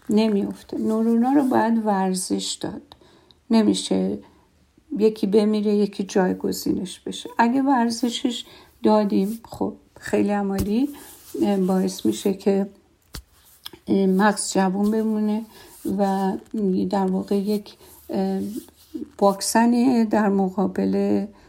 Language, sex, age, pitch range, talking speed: Persian, female, 50-69, 185-210 Hz, 85 wpm